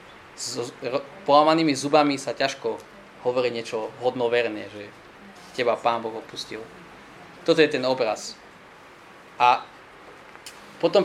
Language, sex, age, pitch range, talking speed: Slovak, male, 20-39, 120-160 Hz, 110 wpm